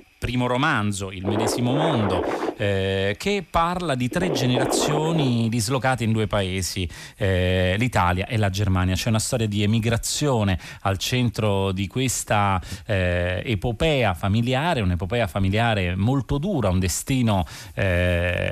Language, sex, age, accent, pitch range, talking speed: Italian, male, 30-49, native, 90-115 Hz, 125 wpm